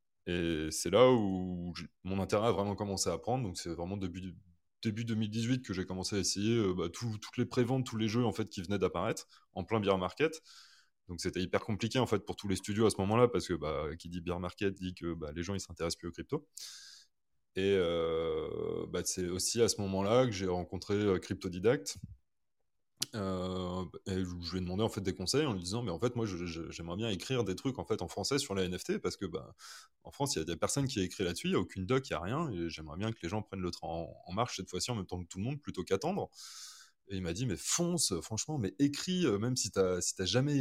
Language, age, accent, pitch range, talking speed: French, 20-39, French, 90-120 Hz, 255 wpm